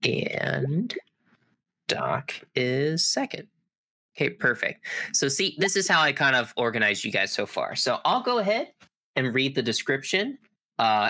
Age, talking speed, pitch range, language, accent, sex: 20-39, 150 wpm, 125-195 Hz, English, American, male